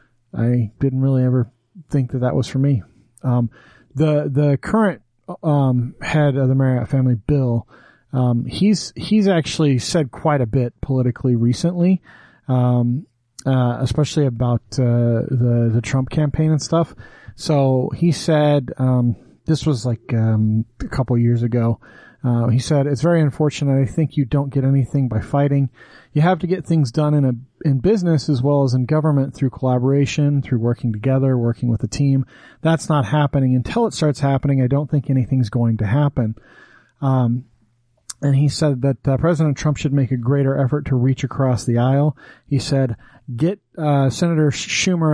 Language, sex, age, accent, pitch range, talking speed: English, male, 30-49, American, 125-150 Hz, 175 wpm